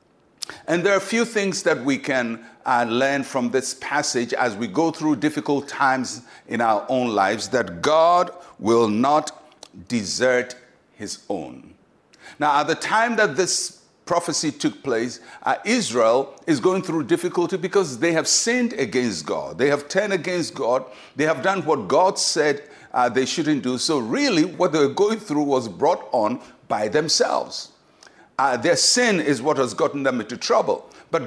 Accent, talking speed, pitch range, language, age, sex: Nigerian, 175 wpm, 130-190 Hz, English, 60-79, male